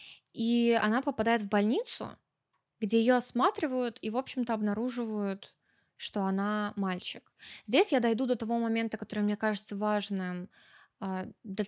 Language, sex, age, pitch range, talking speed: Russian, female, 20-39, 195-235 Hz, 135 wpm